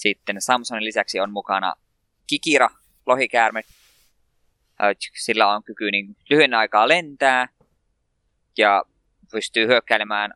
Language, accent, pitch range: Finnish, native, 95-115 Hz